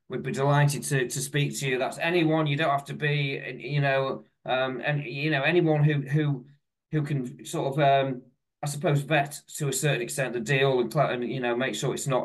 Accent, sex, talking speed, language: British, male, 220 wpm, English